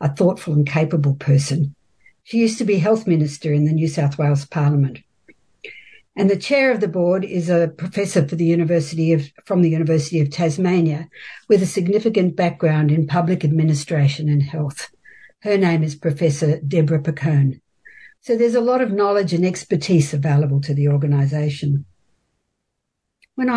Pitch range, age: 150-185 Hz, 60-79